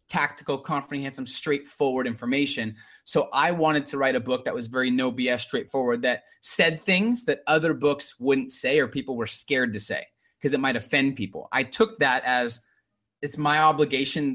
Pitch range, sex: 130-160 Hz, male